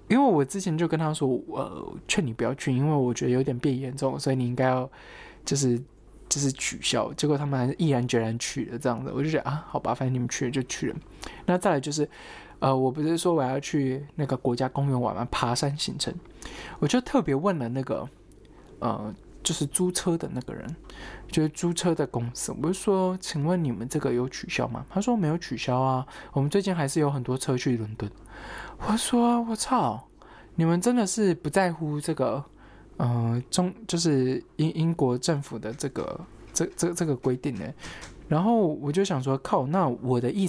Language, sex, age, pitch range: Chinese, male, 20-39, 130-170 Hz